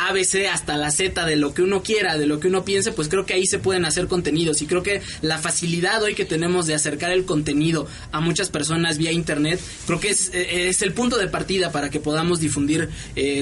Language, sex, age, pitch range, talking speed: English, male, 20-39, 155-190 Hz, 235 wpm